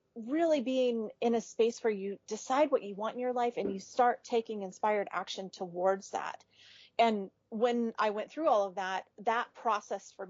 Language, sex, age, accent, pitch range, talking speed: English, female, 30-49, American, 190-235 Hz, 190 wpm